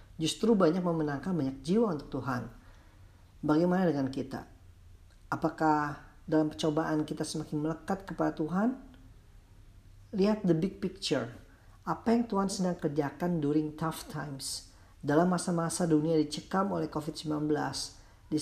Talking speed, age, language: 120 wpm, 40-59, Indonesian